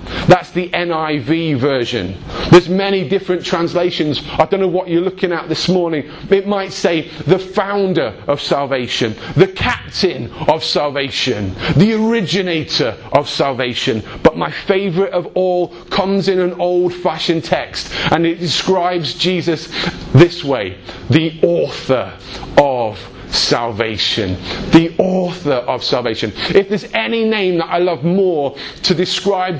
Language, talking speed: English, 135 wpm